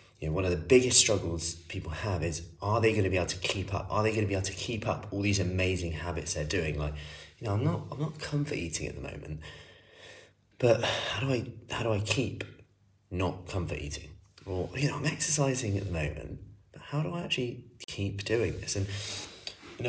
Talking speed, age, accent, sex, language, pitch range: 225 wpm, 30-49, British, male, English, 80-100 Hz